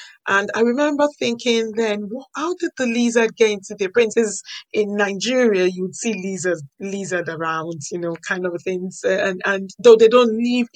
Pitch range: 180-230 Hz